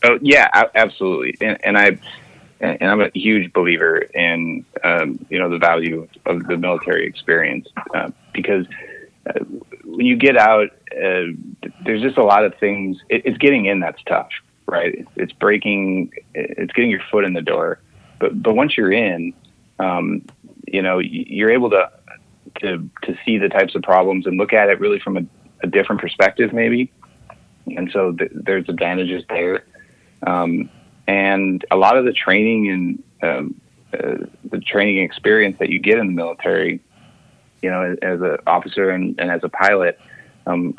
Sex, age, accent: male, 30-49, American